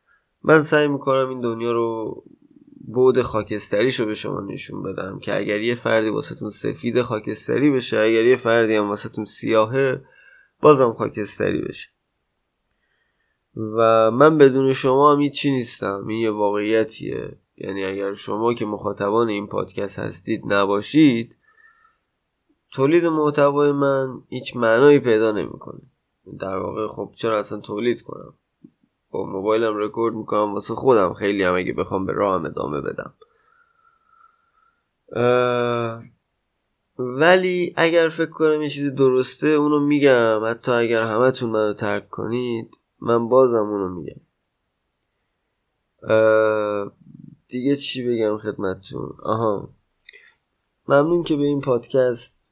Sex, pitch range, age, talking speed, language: male, 110-145 Hz, 20-39, 120 wpm, Persian